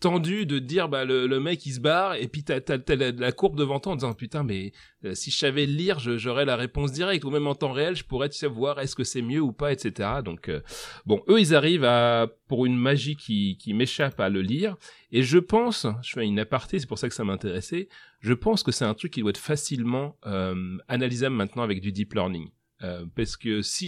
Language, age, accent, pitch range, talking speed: French, 30-49, French, 110-145 Hz, 250 wpm